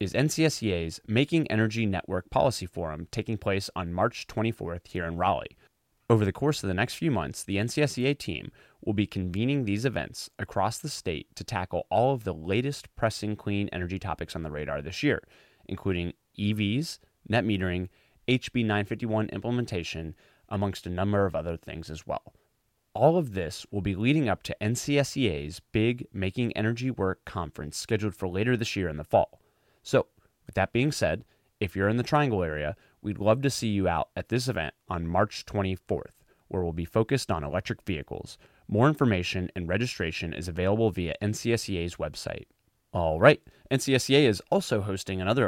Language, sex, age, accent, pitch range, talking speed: English, male, 30-49, American, 90-120 Hz, 170 wpm